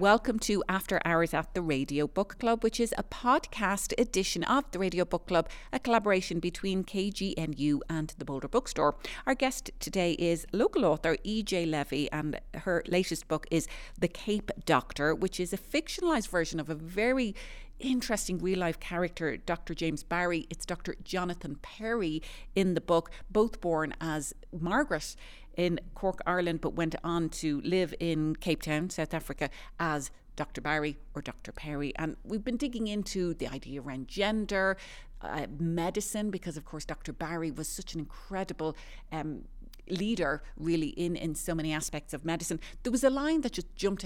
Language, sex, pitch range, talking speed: English, female, 155-195 Hz, 170 wpm